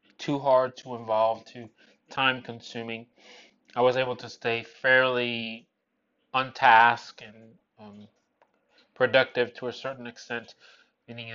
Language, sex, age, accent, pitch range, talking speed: English, male, 20-39, American, 115-145 Hz, 115 wpm